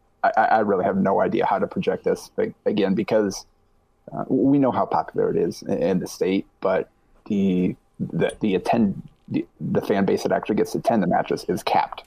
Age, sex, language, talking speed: 30-49, male, English, 205 wpm